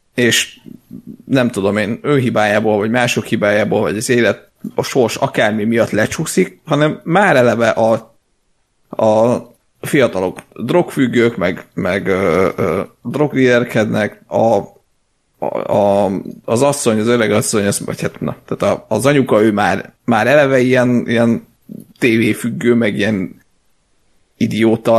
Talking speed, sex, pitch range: 125 wpm, male, 110-130 Hz